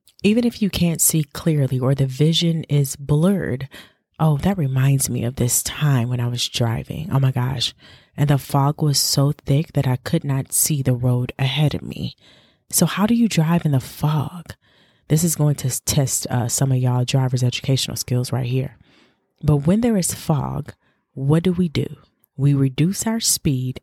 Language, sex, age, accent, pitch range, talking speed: English, female, 30-49, American, 130-170 Hz, 190 wpm